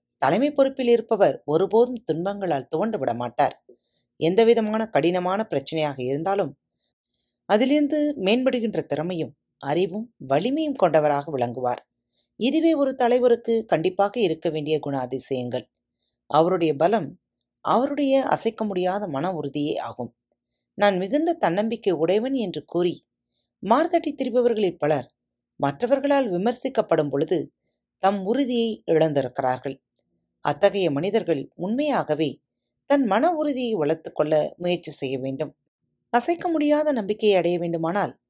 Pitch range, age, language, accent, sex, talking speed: 145-235 Hz, 40-59, Tamil, native, female, 100 wpm